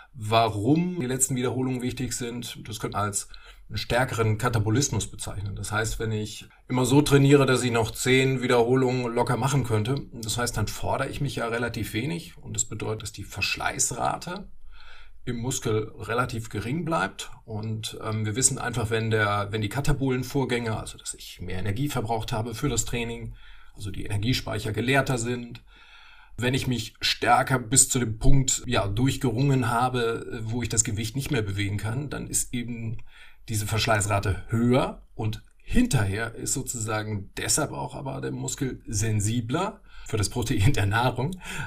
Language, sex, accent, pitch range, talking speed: German, male, German, 110-130 Hz, 160 wpm